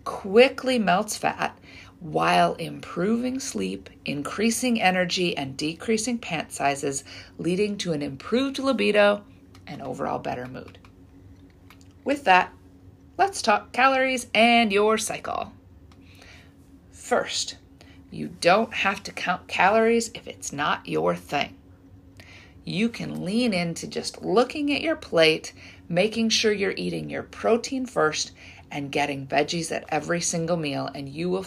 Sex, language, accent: female, English, American